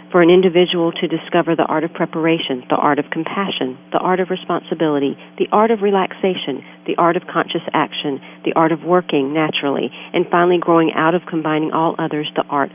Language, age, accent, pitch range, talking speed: English, 50-69, American, 145-175 Hz, 195 wpm